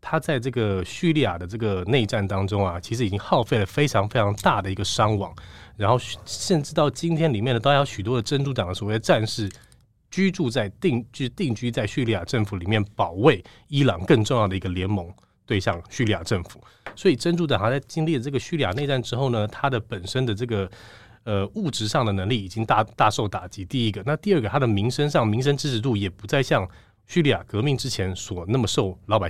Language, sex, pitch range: Chinese, male, 100-130 Hz